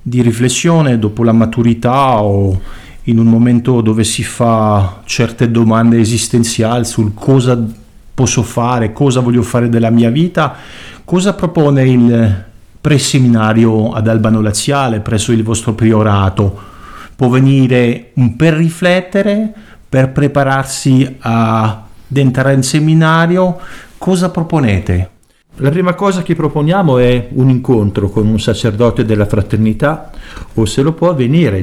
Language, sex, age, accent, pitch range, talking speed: Italian, male, 50-69, native, 105-130 Hz, 130 wpm